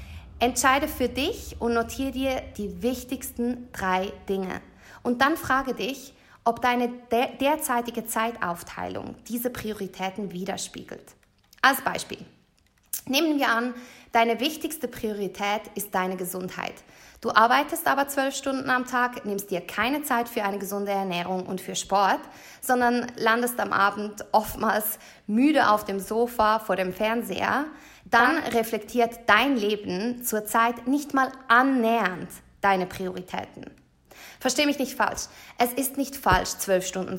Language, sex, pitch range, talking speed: German, female, 200-250 Hz, 130 wpm